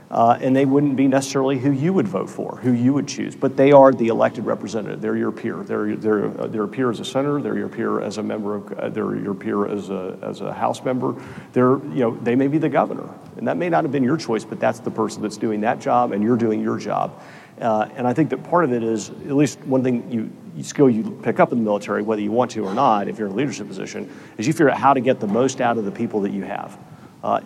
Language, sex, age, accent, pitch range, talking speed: English, male, 40-59, American, 110-130 Hz, 280 wpm